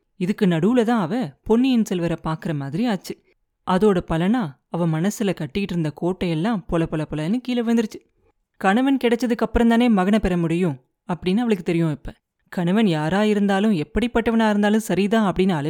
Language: Tamil